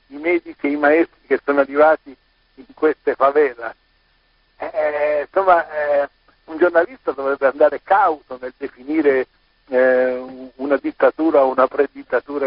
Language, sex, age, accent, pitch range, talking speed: Italian, male, 60-79, native, 135-175 Hz, 130 wpm